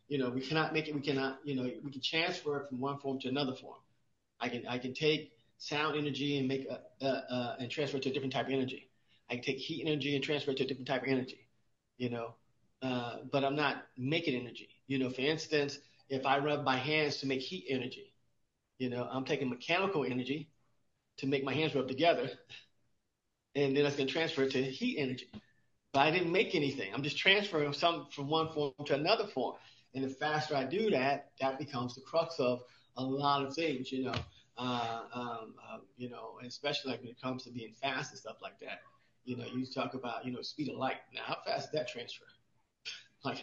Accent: American